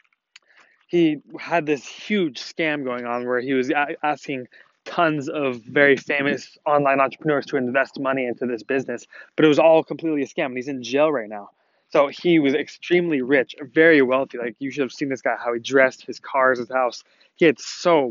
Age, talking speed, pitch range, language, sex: 20-39, 200 wpm, 125-145 Hz, English, male